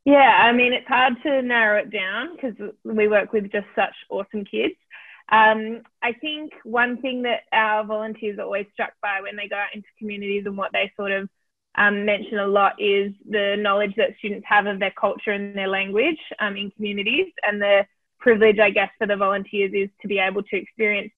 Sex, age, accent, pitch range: female, 20-39, Australian, 200-220 Hz